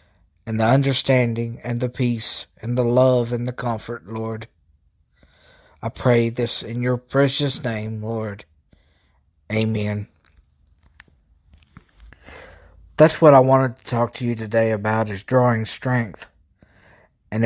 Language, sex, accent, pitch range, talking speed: English, male, American, 85-125 Hz, 125 wpm